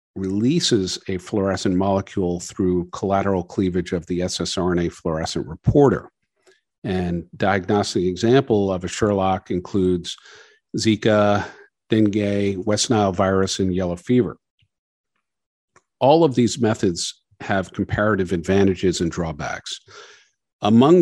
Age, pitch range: 50-69, 90-105 Hz